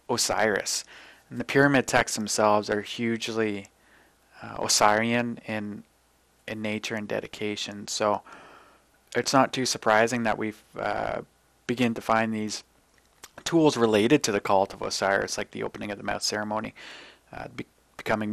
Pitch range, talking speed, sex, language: 105-120 Hz, 145 wpm, male, English